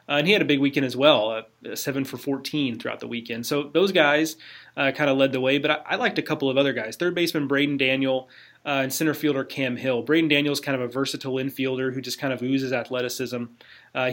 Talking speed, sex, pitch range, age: 250 wpm, male, 125-145 Hz, 30-49